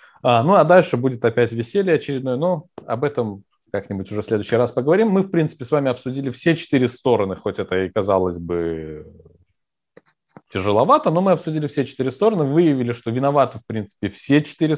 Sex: male